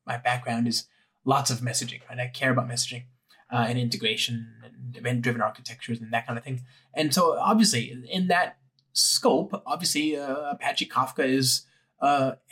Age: 20-39